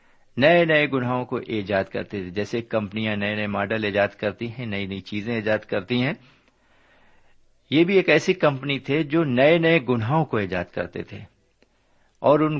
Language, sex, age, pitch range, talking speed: Urdu, male, 60-79, 95-135 Hz, 175 wpm